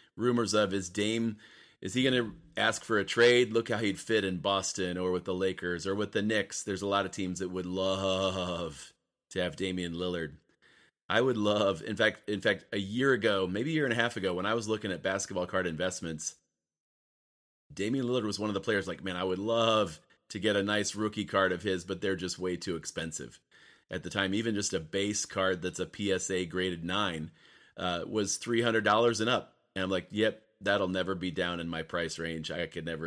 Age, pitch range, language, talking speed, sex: 30-49, 90-115 Hz, English, 220 wpm, male